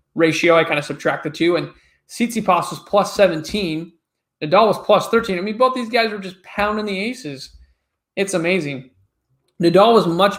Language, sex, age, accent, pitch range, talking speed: English, male, 20-39, American, 150-185 Hz, 180 wpm